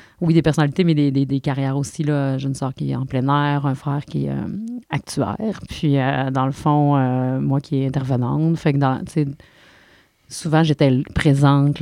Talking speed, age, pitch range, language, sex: 200 wpm, 30-49, 135-155 Hz, French, female